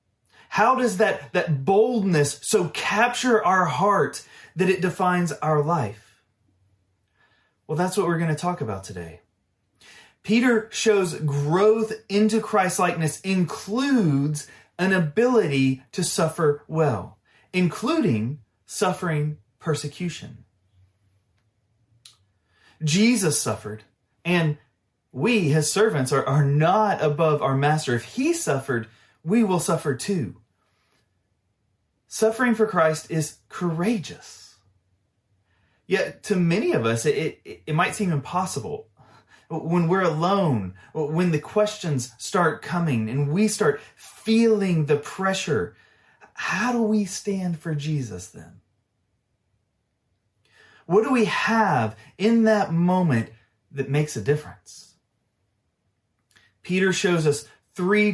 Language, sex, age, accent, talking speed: English, male, 30-49, American, 110 wpm